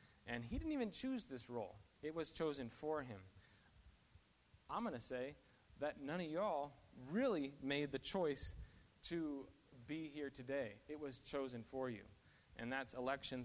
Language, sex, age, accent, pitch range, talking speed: English, male, 30-49, American, 105-130 Hz, 160 wpm